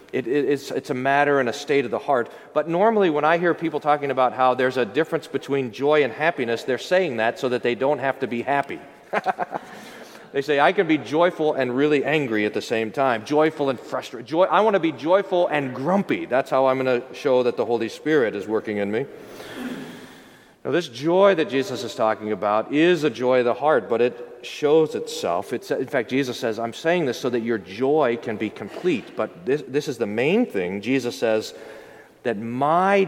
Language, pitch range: English, 130-175 Hz